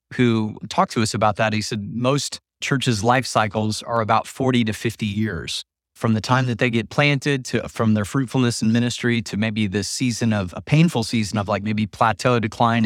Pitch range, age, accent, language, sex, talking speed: 105-125 Hz, 30-49, American, English, male, 205 wpm